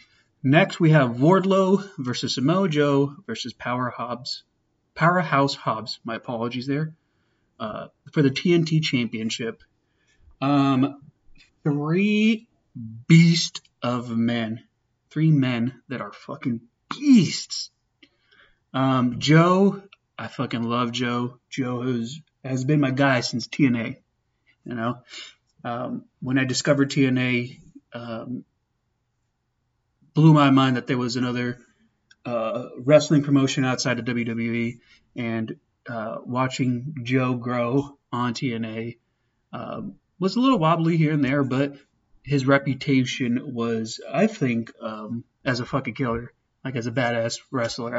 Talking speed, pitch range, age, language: 120 wpm, 120-145 Hz, 30-49, English